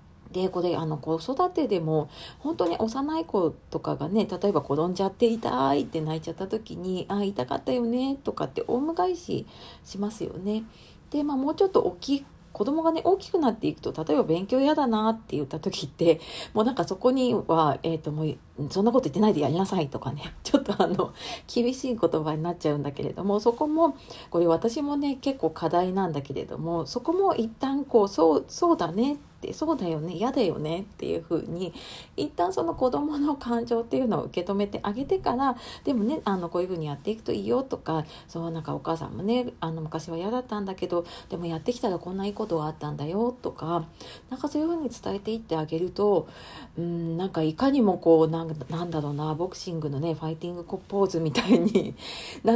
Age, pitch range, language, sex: 40-59, 160-245 Hz, Japanese, female